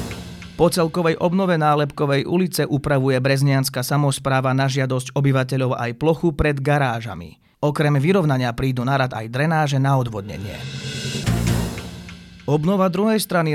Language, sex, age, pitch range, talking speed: Slovak, male, 30-49, 125-160 Hz, 115 wpm